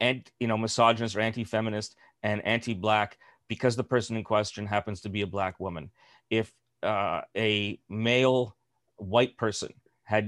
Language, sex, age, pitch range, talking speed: English, male, 40-59, 105-120 Hz, 150 wpm